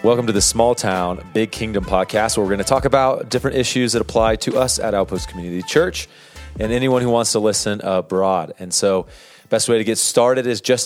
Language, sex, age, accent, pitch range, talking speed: English, male, 30-49, American, 100-120 Hz, 215 wpm